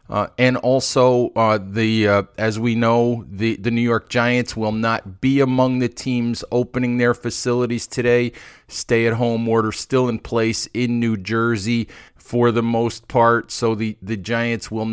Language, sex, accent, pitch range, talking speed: English, male, American, 115-125 Hz, 165 wpm